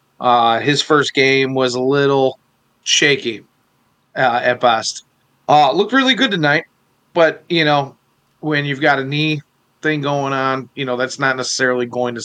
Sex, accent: male, American